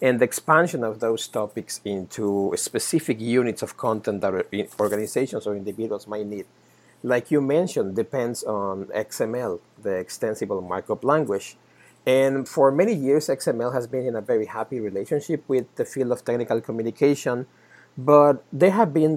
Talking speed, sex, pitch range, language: 155 wpm, male, 110-145 Hz, English